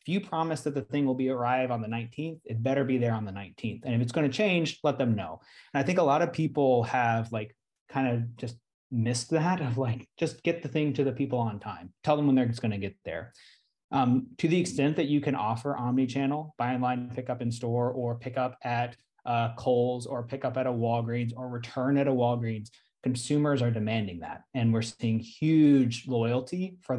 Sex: male